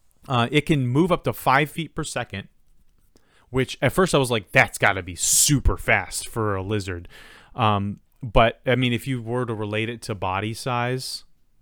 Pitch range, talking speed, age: 105-130 Hz, 195 wpm, 30-49